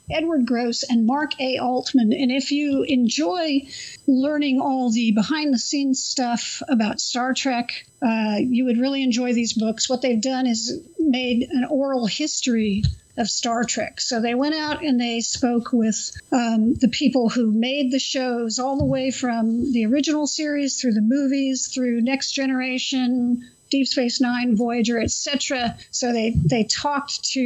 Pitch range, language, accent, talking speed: 230-270 Hz, English, American, 165 wpm